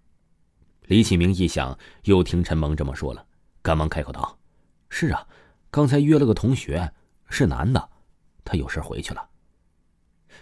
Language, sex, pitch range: Chinese, male, 80-100 Hz